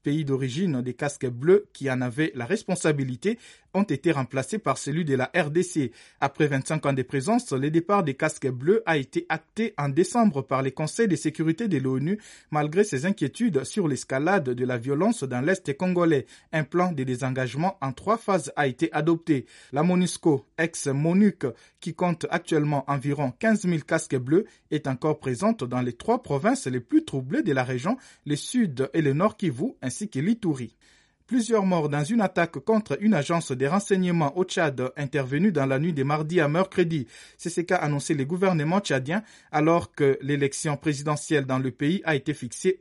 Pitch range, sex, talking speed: 135-185 Hz, male, 180 wpm